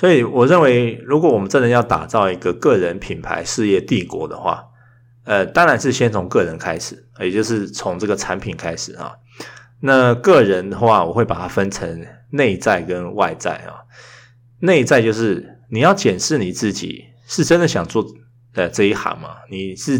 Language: Chinese